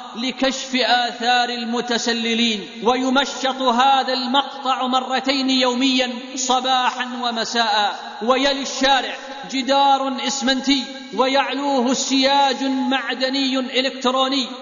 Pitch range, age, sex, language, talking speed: 245-270 Hz, 40-59, male, Arabic, 75 wpm